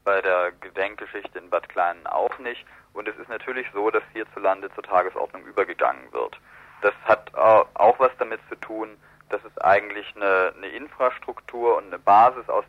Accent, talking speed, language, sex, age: German, 170 wpm, German, male, 40-59